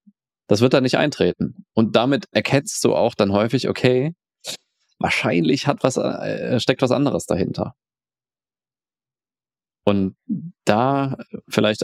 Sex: male